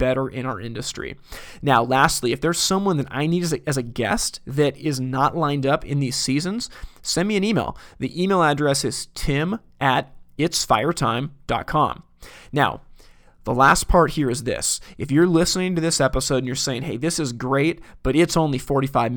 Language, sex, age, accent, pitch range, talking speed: English, male, 30-49, American, 130-165 Hz, 185 wpm